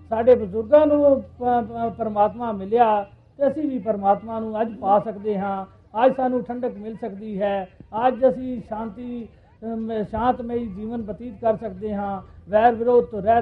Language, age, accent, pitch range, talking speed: Hindi, 50-69, native, 210-255 Hz, 140 wpm